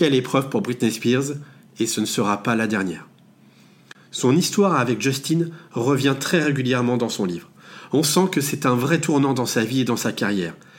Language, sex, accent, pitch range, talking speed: French, male, French, 120-155 Hz, 200 wpm